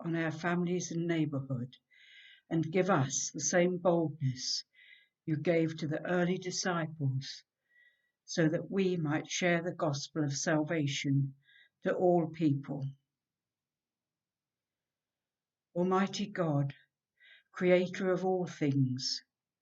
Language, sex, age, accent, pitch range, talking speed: English, female, 60-79, British, 145-185 Hz, 105 wpm